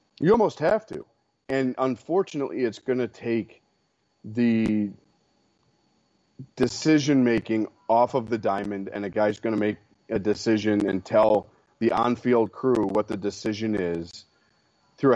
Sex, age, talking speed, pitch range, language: male, 30-49, 135 wpm, 105-115 Hz, English